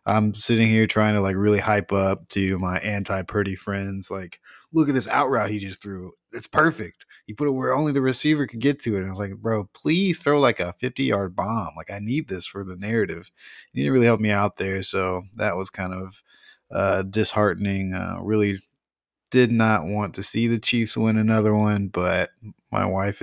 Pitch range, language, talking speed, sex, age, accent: 95-110 Hz, English, 215 wpm, male, 20-39, American